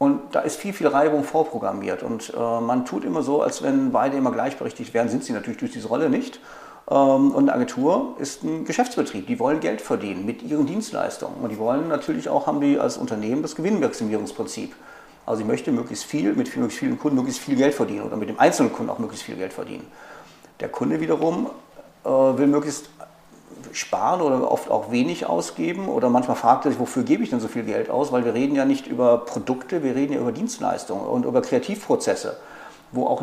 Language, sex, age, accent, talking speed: German, male, 50-69, German, 210 wpm